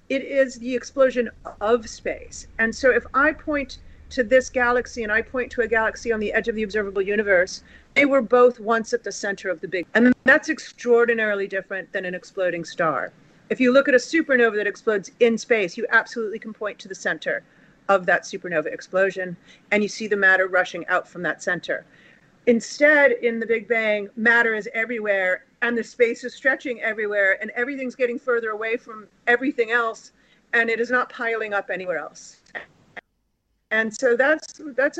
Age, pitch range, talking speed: 40-59, 200-245 Hz, 190 wpm